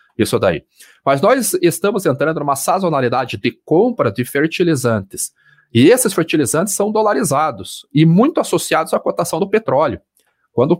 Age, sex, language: 40-59, male, Portuguese